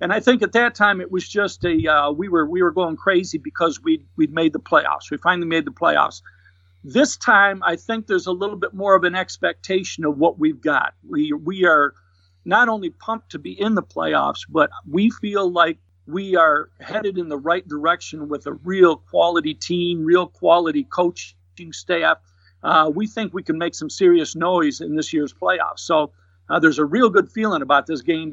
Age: 50-69